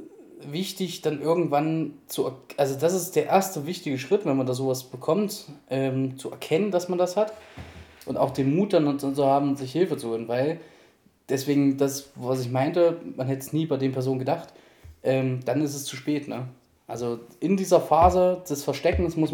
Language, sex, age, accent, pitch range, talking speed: German, male, 20-39, German, 130-155 Hz, 200 wpm